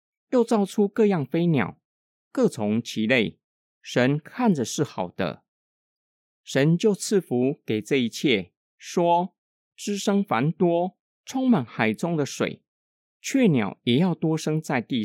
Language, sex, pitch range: Chinese, male, 125-200 Hz